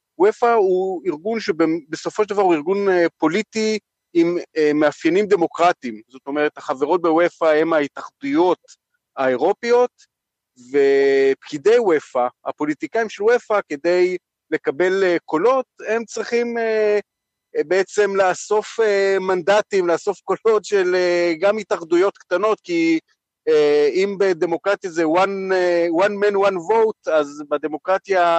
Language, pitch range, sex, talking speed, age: Hebrew, 160-210 Hz, male, 105 wpm, 40-59